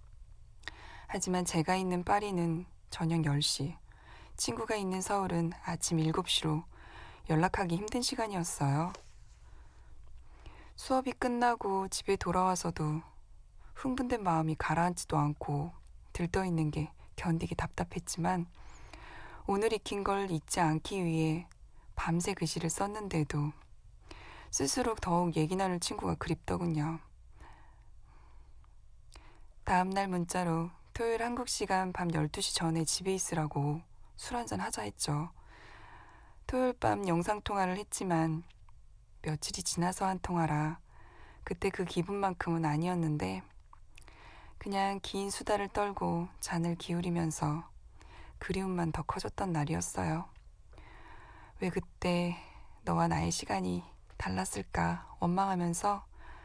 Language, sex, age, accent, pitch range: Korean, female, 20-39, native, 150-190 Hz